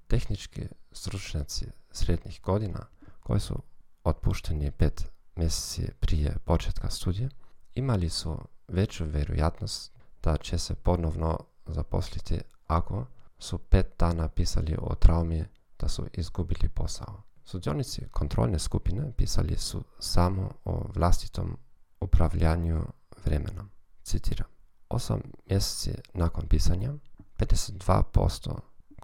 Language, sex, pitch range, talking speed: Croatian, male, 80-100 Hz, 100 wpm